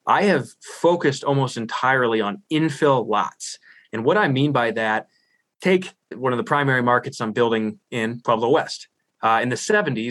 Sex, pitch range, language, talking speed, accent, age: male, 115-150 Hz, English, 165 wpm, American, 20-39